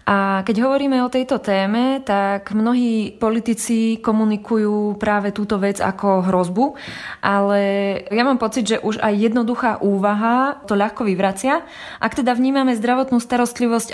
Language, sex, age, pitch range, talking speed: Slovak, female, 20-39, 200-235 Hz, 140 wpm